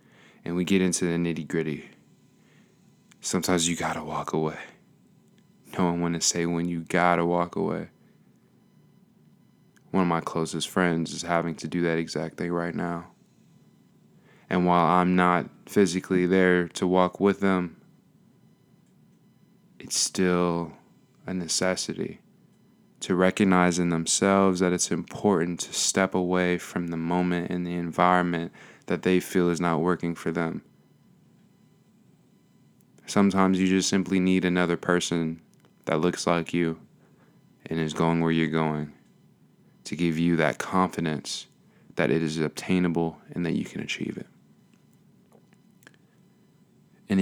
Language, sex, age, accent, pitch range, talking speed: English, male, 20-39, American, 85-90 Hz, 135 wpm